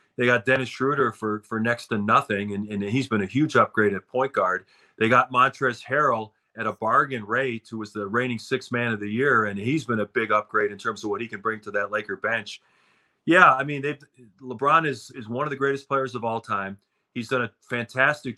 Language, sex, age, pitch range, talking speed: English, male, 40-59, 110-130 Hz, 230 wpm